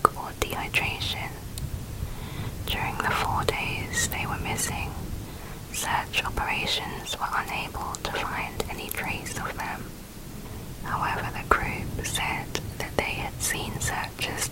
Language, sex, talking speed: English, female, 110 wpm